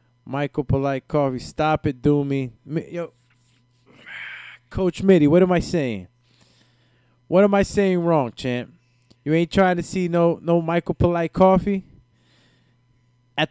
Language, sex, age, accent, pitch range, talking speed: English, male, 20-39, American, 125-165 Hz, 135 wpm